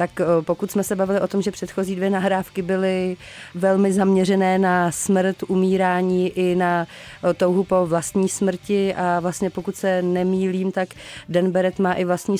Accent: native